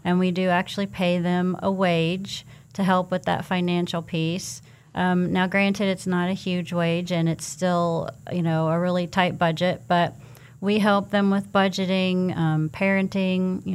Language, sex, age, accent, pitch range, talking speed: English, female, 40-59, American, 165-180 Hz, 175 wpm